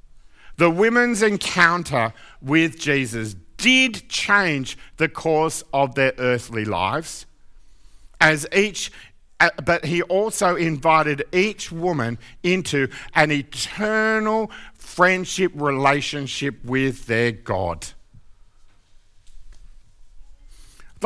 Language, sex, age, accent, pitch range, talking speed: English, male, 50-69, Australian, 115-175 Hz, 85 wpm